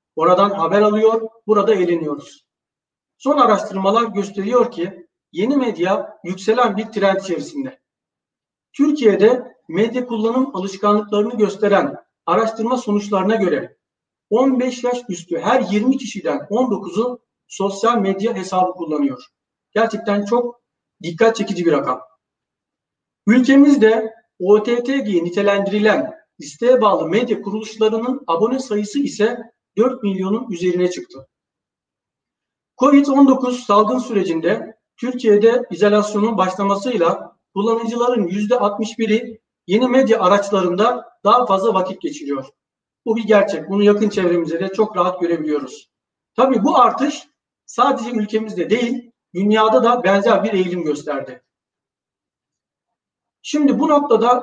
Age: 60-79